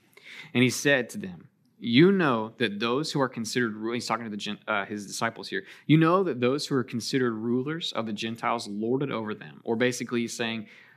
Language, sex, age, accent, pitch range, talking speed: English, male, 20-39, American, 110-135 Hz, 195 wpm